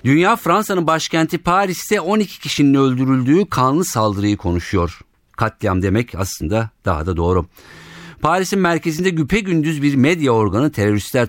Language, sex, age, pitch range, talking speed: Turkish, male, 50-69, 95-140 Hz, 130 wpm